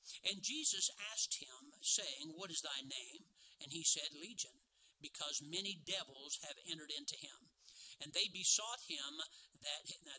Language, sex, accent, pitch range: English, male, American, 155-205 Hz